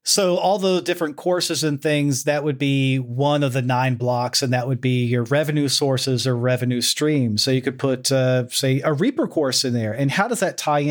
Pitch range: 125-150 Hz